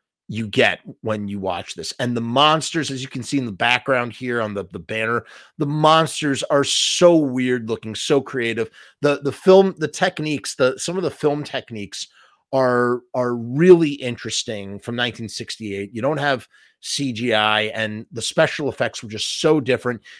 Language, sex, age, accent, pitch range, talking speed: English, male, 30-49, American, 110-145 Hz, 170 wpm